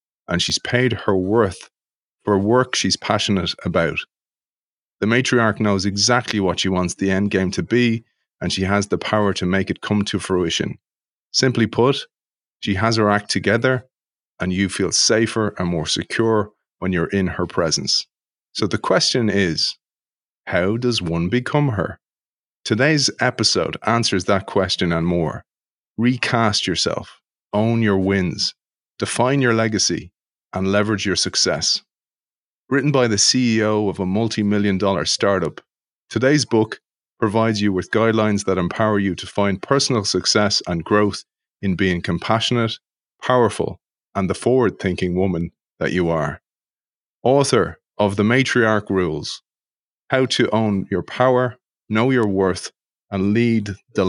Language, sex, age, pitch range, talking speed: English, male, 30-49, 95-115 Hz, 145 wpm